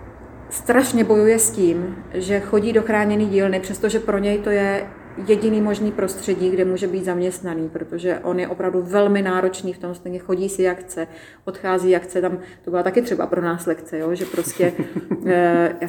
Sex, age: female, 30-49